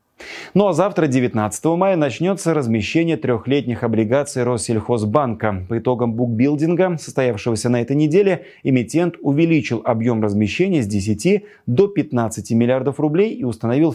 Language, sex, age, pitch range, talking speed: Russian, male, 30-49, 115-160 Hz, 125 wpm